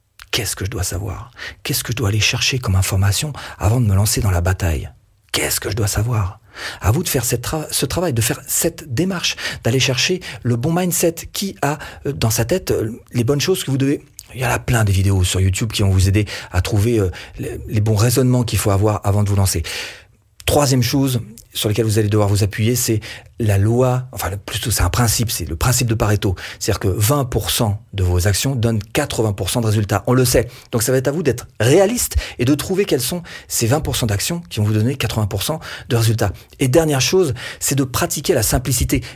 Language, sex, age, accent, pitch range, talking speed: French, male, 40-59, French, 105-135 Hz, 220 wpm